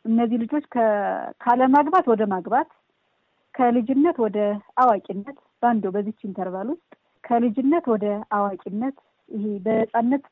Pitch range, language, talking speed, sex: 200-250 Hz, Amharic, 105 wpm, female